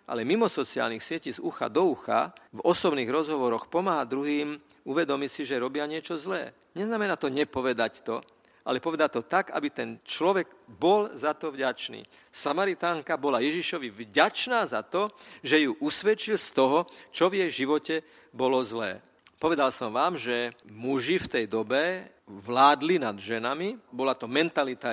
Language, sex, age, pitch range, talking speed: Slovak, male, 50-69, 125-160 Hz, 155 wpm